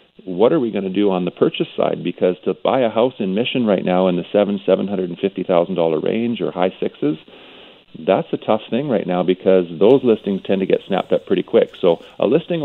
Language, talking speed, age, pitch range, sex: English, 220 wpm, 40-59, 95-105 Hz, male